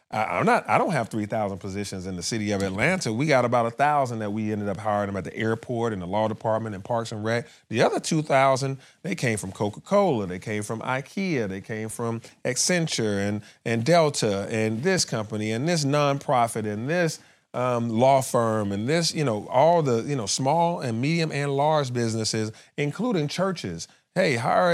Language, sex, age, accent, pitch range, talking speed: English, male, 30-49, American, 105-150 Hz, 195 wpm